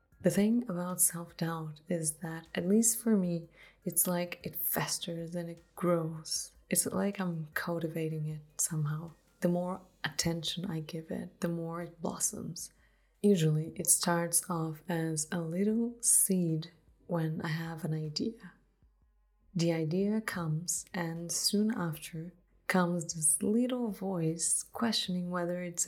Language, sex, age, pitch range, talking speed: English, female, 20-39, 160-185 Hz, 135 wpm